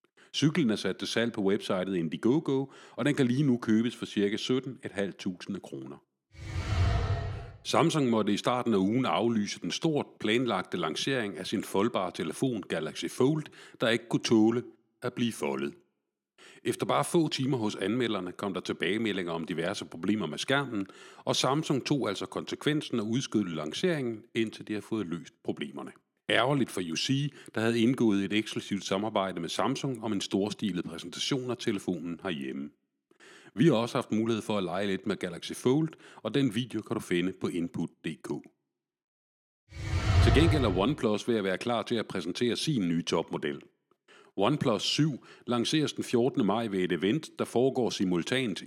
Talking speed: 165 wpm